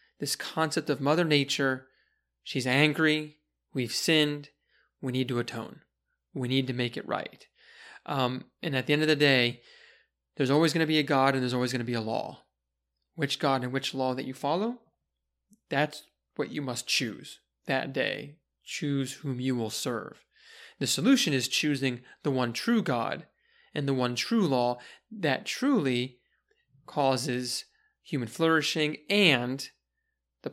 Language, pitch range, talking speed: English, 125-160 Hz, 160 wpm